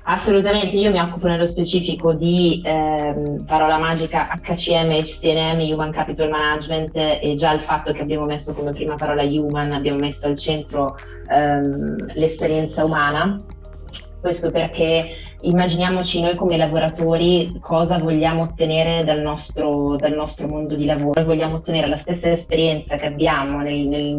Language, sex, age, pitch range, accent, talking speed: Italian, female, 20-39, 150-165 Hz, native, 140 wpm